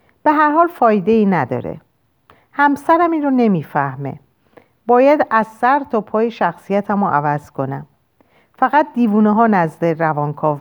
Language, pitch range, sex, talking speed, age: Persian, 155-255 Hz, female, 135 wpm, 50-69